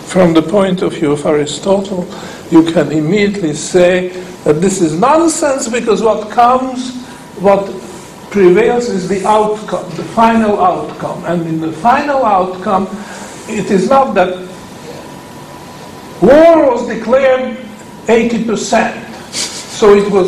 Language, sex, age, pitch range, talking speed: English, male, 50-69, 170-220 Hz, 125 wpm